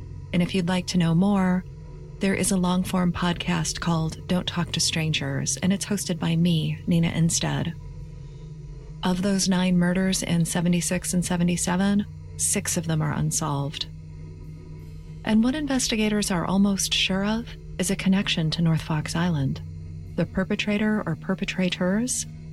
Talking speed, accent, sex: 145 wpm, American, female